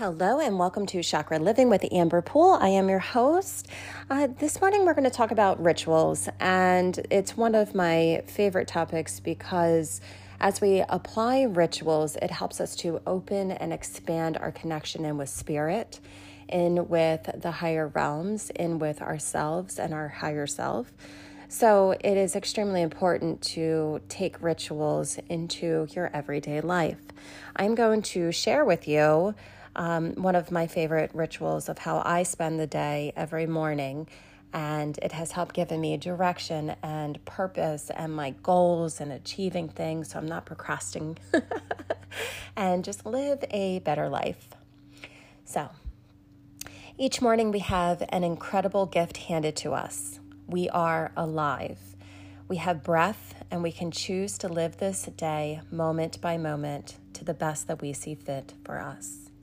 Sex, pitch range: female, 150-185 Hz